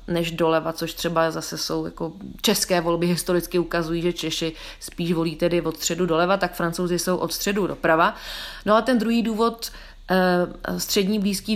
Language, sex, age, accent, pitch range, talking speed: Czech, female, 30-49, native, 175-195 Hz, 165 wpm